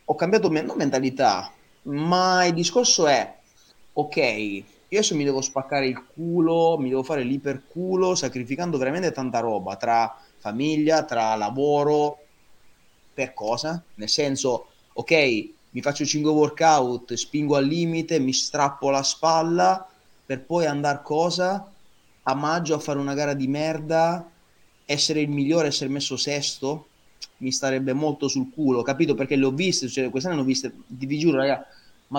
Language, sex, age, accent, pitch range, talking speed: Italian, male, 30-49, native, 130-165 Hz, 150 wpm